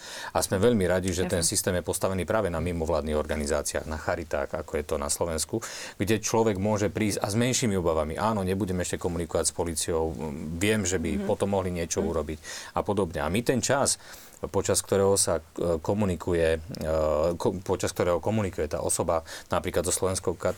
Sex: male